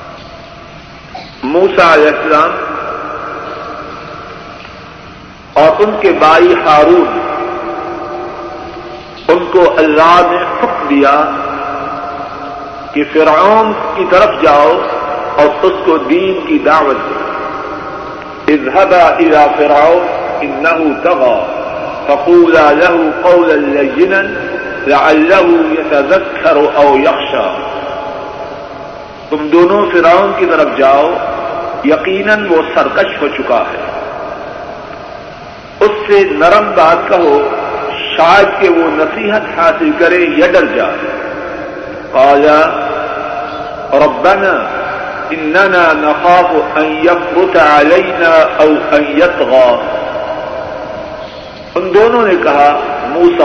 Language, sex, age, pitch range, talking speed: Urdu, male, 50-69, 150-195 Hz, 85 wpm